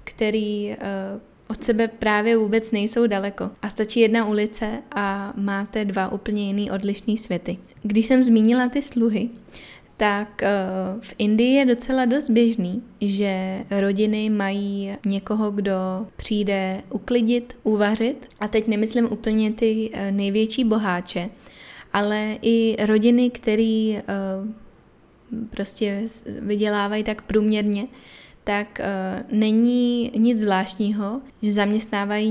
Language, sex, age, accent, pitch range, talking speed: Czech, female, 20-39, native, 200-225 Hz, 110 wpm